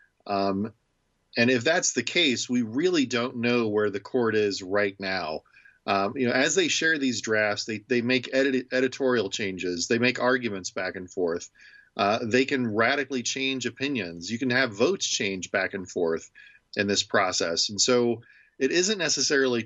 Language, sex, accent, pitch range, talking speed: English, male, American, 105-130 Hz, 175 wpm